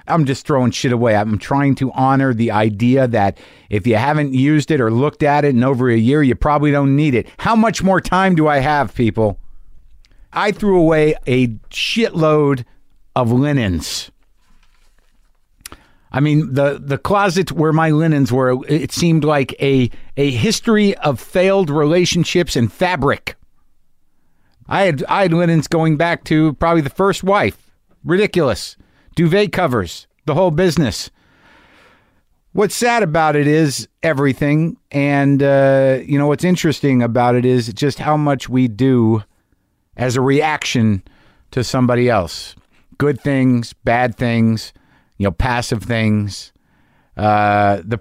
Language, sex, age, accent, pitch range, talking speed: English, male, 50-69, American, 110-155 Hz, 150 wpm